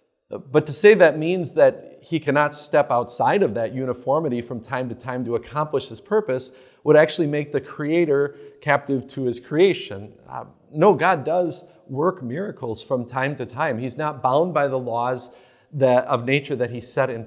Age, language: 40-59, English